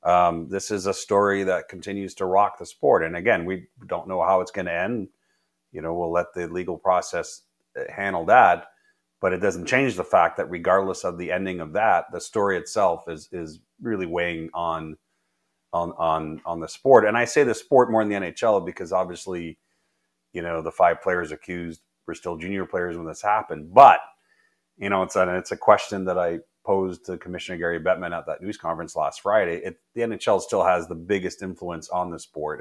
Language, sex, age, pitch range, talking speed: English, male, 30-49, 80-95 Hz, 205 wpm